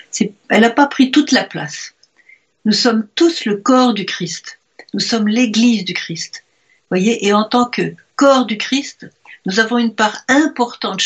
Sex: female